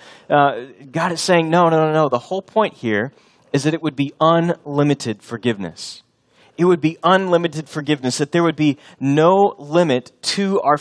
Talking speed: 180 wpm